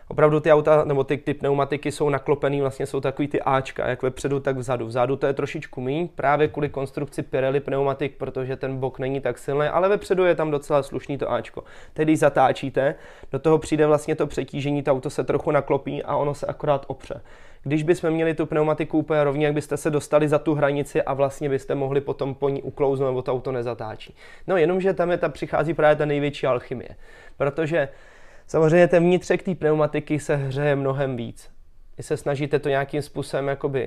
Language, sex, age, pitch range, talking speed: Czech, male, 20-39, 130-150 Hz, 200 wpm